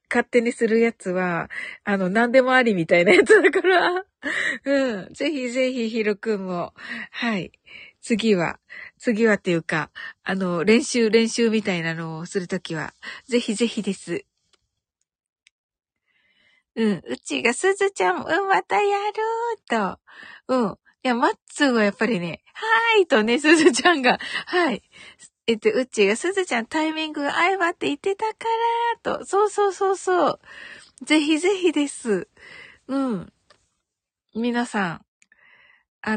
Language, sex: Japanese, female